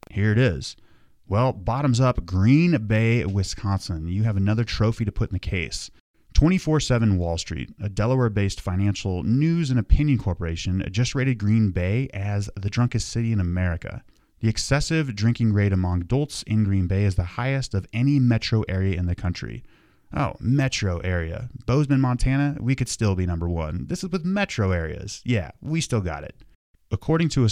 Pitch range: 95-125 Hz